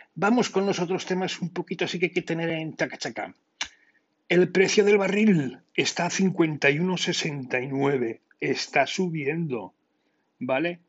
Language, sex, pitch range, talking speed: Spanish, male, 135-180 Hz, 130 wpm